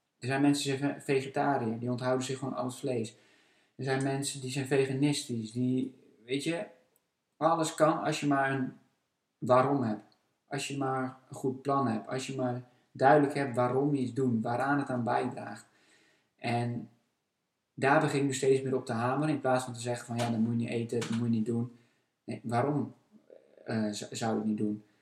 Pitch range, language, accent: 115-130 Hz, Dutch, Dutch